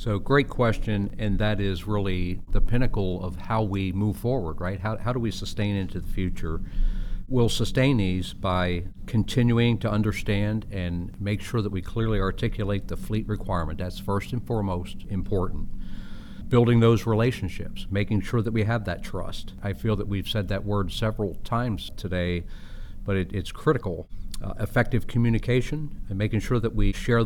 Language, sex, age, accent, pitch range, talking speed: English, male, 50-69, American, 95-115 Hz, 170 wpm